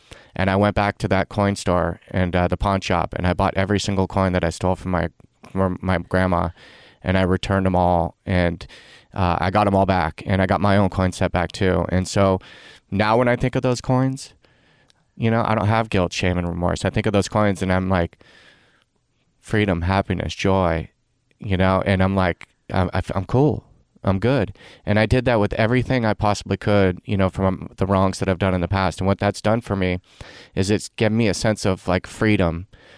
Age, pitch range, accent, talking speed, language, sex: 20-39, 90-105 Hz, American, 220 wpm, English, male